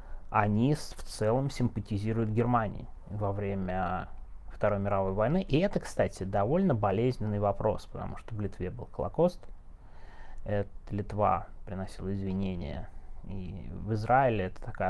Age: 20-39